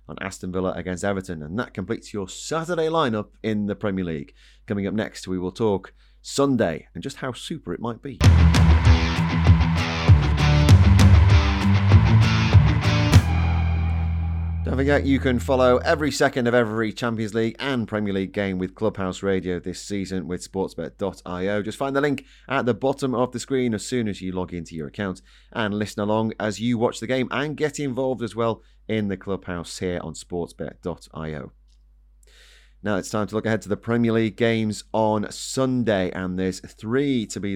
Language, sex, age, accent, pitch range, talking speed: English, male, 30-49, British, 90-120 Hz, 170 wpm